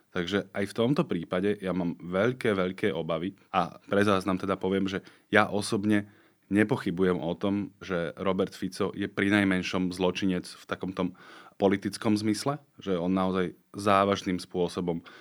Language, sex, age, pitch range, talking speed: Slovak, male, 20-39, 90-105 Hz, 145 wpm